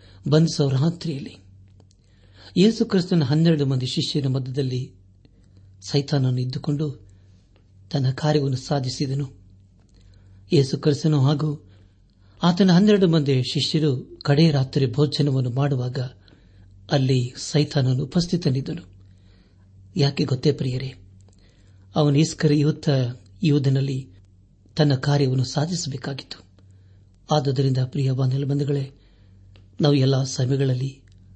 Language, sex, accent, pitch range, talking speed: Kannada, male, native, 95-150 Hz, 80 wpm